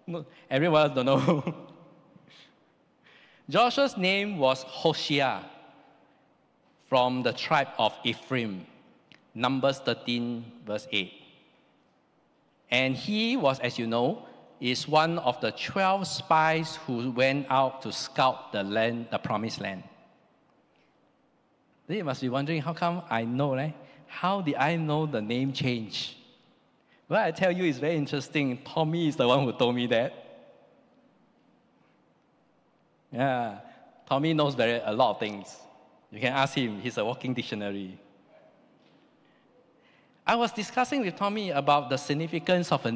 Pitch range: 130-170 Hz